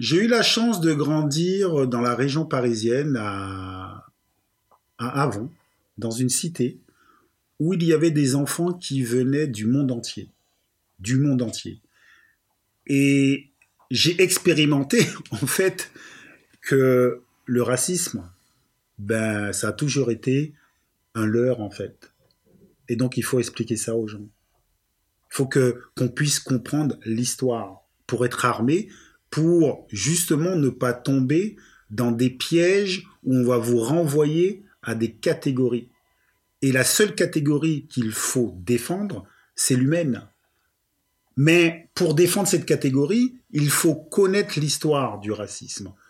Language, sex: French, male